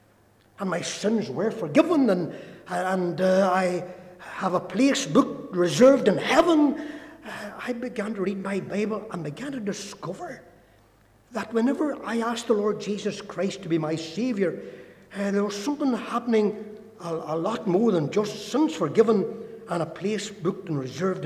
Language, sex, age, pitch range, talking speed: English, male, 60-79, 170-240 Hz, 165 wpm